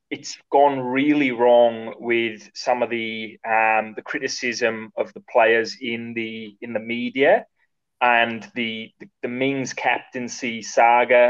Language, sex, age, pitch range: English, male, 20-39, 110-130 Hz